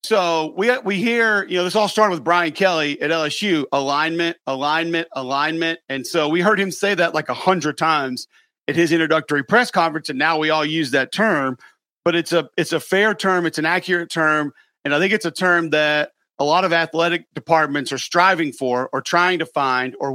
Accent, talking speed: American, 210 wpm